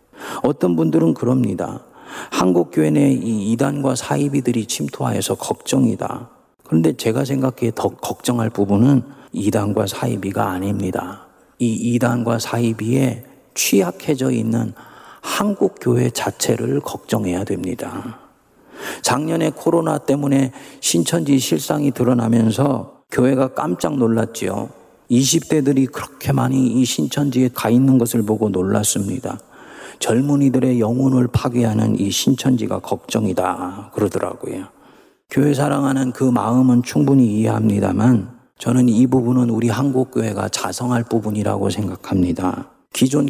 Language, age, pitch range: Korean, 40-59, 110-130 Hz